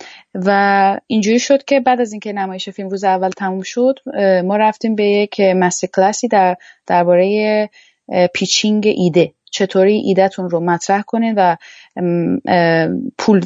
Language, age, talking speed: Persian, 30-49, 130 wpm